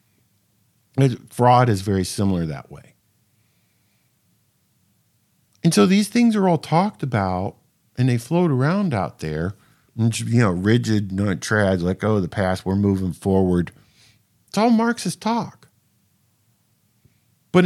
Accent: American